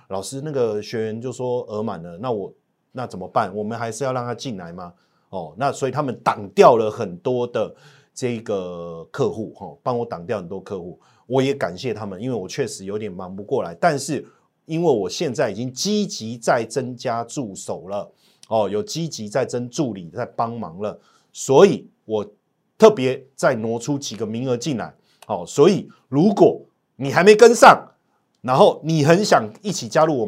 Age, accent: 30-49, native